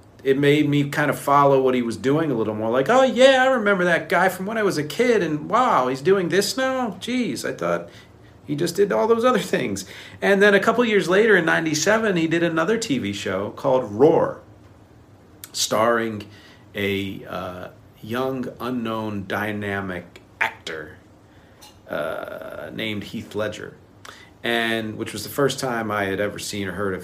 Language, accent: English, American